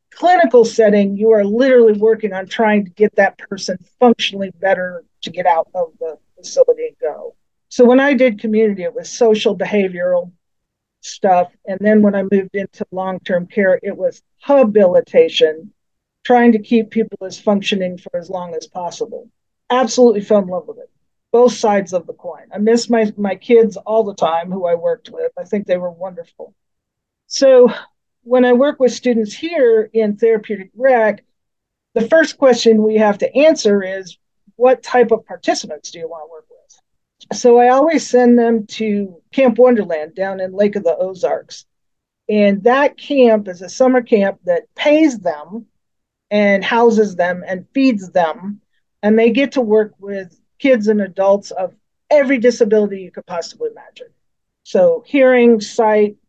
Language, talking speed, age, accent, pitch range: English, 170 wpm, 40-59, American, 195-250 Hz